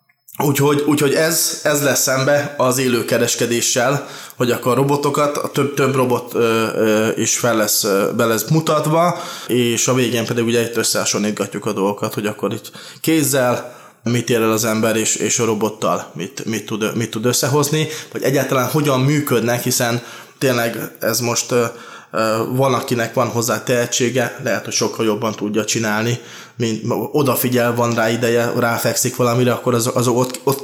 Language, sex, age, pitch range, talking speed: Hungarian, male, 20-39, 115-140 Hz, 165 wpm